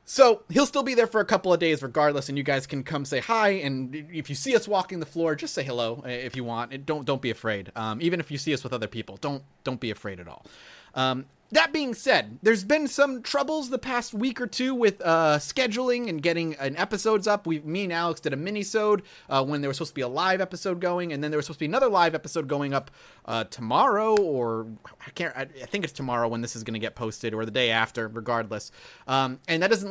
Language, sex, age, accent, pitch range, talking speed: English, male, 30-49, American, 135-190 Hz, 250 wpm